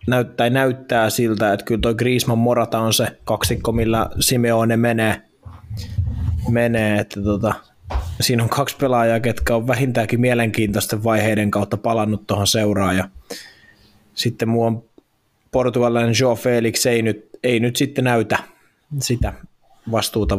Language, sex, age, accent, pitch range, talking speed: Finnish, male, 20-39, native, 105-120 Hz, 125 wpm